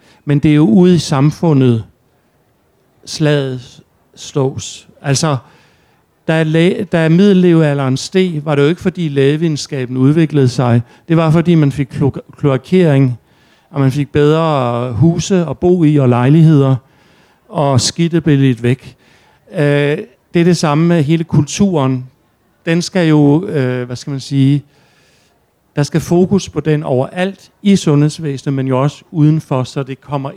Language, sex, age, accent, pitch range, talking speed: Danish, male, 60-79, native, 130-165 Hz, 140 wpm